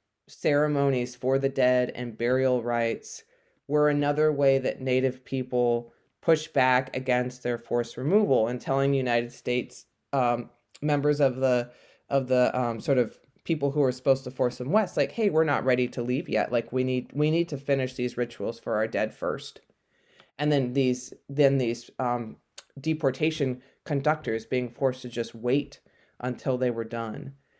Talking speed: 170 wpm